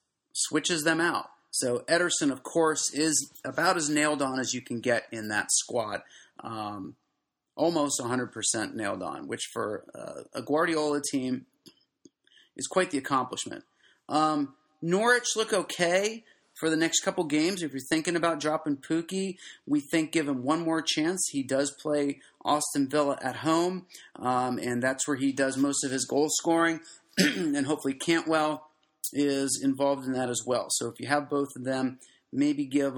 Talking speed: 165 wpm